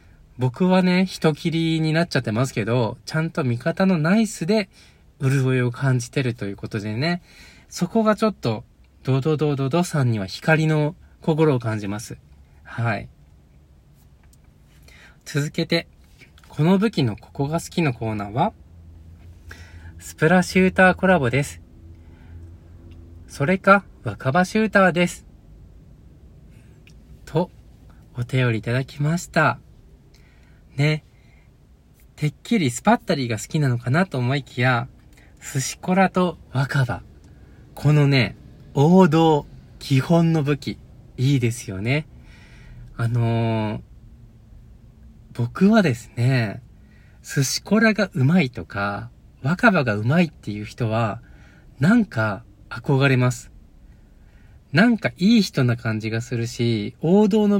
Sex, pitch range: male, 105-165 Hz